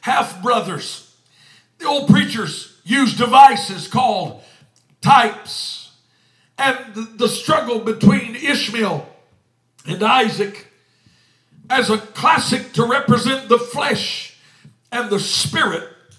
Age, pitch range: 60-79, 195-250 Hz